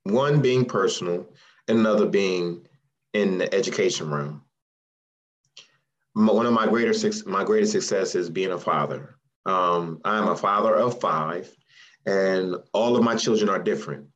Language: English